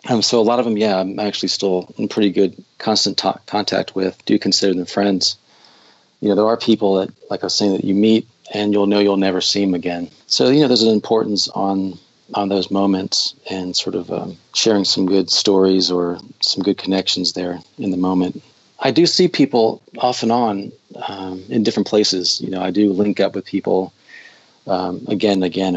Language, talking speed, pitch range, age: English, 210 wpm, 95-110 Hz, 40-59